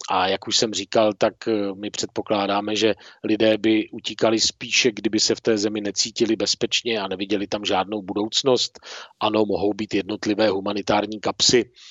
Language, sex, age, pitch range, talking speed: Czech, male, 40-59, 105-120 Hz, 155 wpm